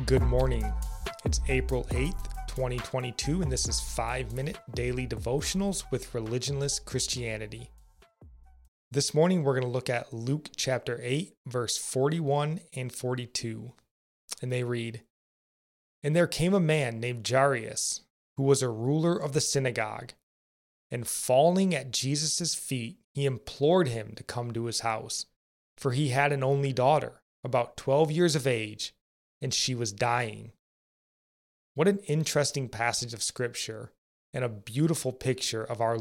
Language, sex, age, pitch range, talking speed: English, male, 20-39, 115-140 Hz, 145 wpm